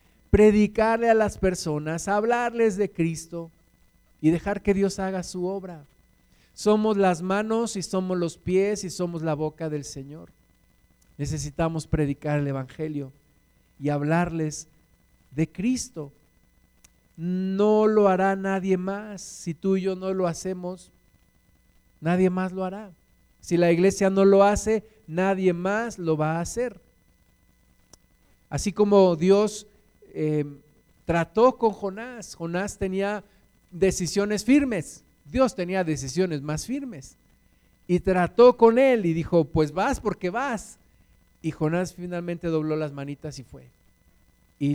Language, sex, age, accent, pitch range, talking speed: Spanish, male, 50-69, Mexican, 150-195 Hz, 130 wpm